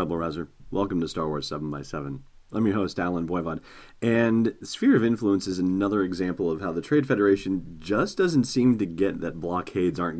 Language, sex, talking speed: English, male, 175 wpm